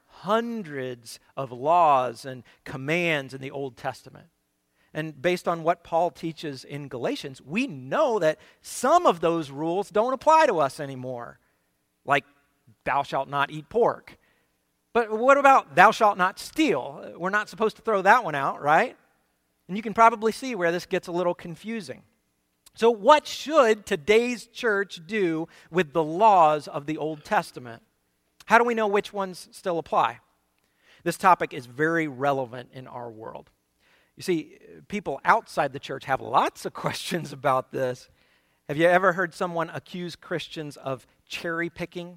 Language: English